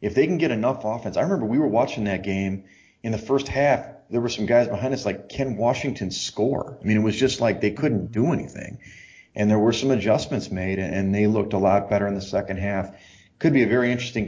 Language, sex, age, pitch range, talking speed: English, male, 30-49, 100-120 Hz, 245 wpm